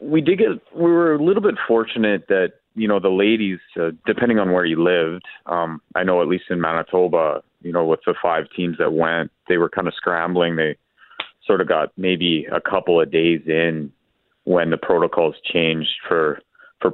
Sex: male